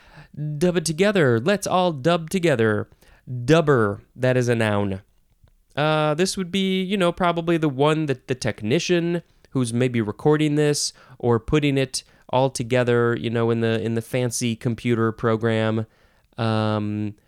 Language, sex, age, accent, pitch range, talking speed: English, male, 20-39, American, 115-160 Hz, 150 wpm